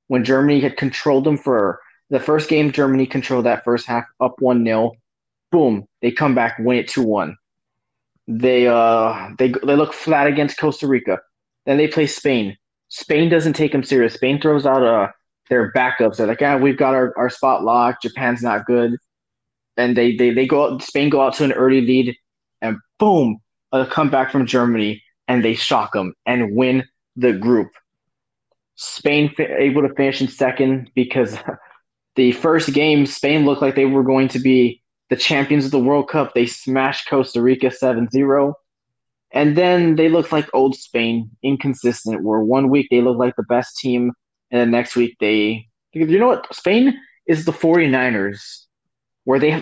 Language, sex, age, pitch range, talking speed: English, male, 20-39, 120-145 Hz, 180 wpm